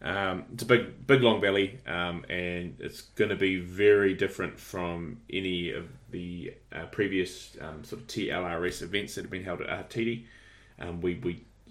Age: 20-39